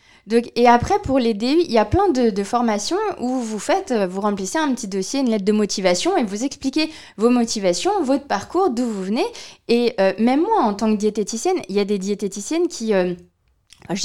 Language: French